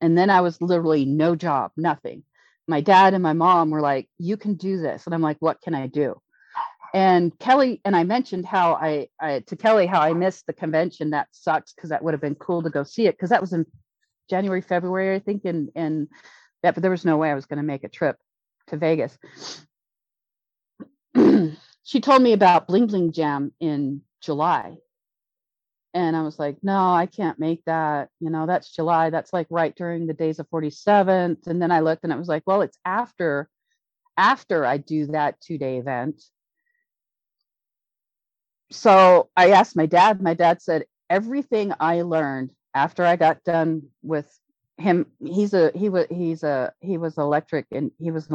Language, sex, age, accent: English, female, 40-59, American